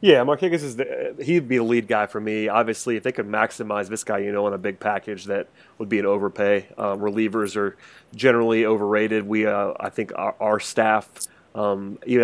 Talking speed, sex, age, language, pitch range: 200 wpm, male, 30-49, English, 105-115 Hz